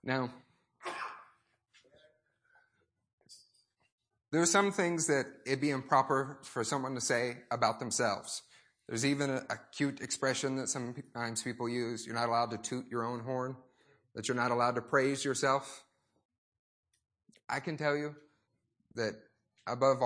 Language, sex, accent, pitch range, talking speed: English, male, American, 120-165 Hz, 135 wpm